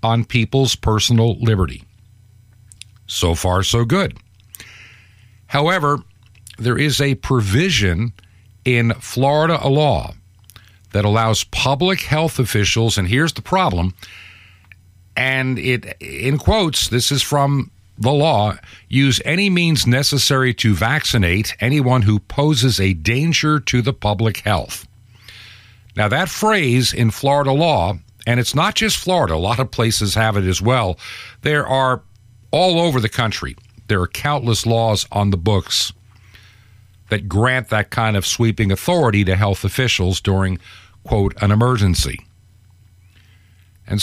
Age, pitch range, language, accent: 50-69, 100-130 Hz, English, American